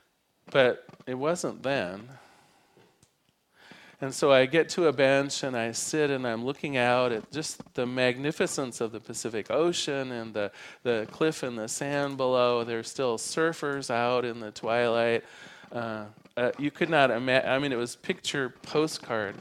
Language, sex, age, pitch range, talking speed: English, male, 40-59, 115-145 Hz, 165 wpm